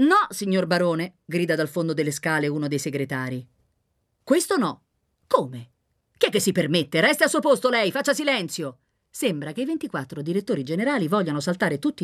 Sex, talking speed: female, 175 wpm